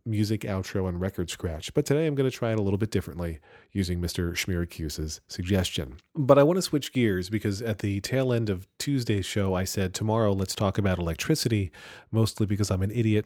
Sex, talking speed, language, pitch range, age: male, 210 wpm, English, 90-110 Hz, 40-59